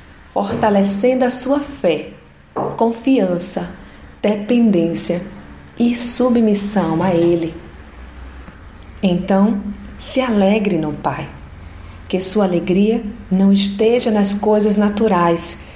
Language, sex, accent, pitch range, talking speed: Portuguese, female, Brazilian, 170-220 Hz, 90 wpm